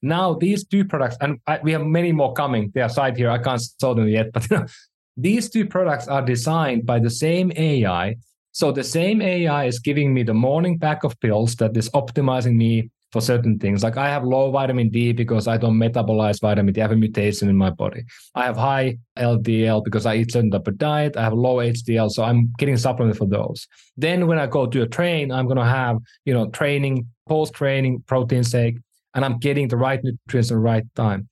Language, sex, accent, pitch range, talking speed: English, male, Finnish, 115-145 Hz, 225 wpm